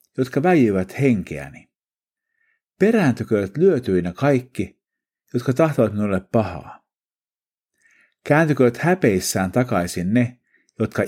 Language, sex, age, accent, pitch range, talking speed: Finnish, male, 50-69, native, 105-170 Hz, 80 wpm